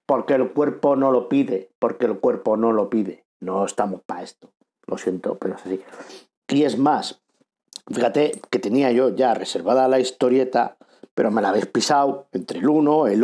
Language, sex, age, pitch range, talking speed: Spanish, male, 50-69, 115-145 Hz, 185 wpm